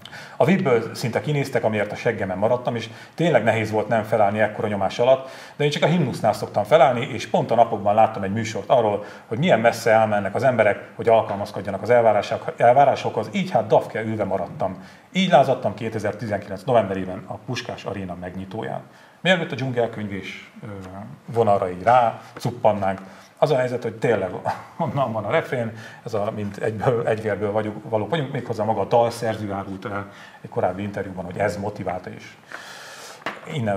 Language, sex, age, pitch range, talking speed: Hungarian, male, 40-59, 100-130 Hz, 165 wpm